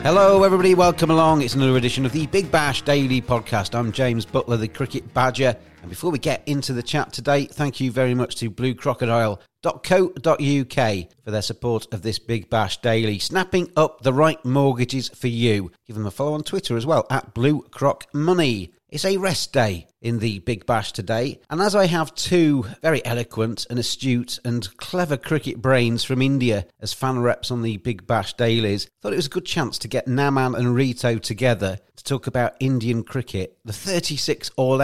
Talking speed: 190 wpm